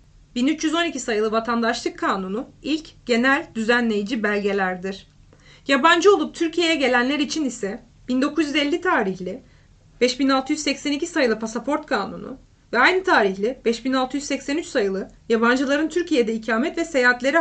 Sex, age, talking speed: female, 30-49, 105 wpm